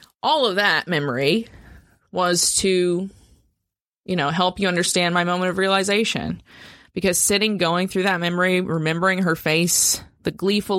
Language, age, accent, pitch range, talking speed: English, 20-39, American, 160-185 Hz, 145 wpm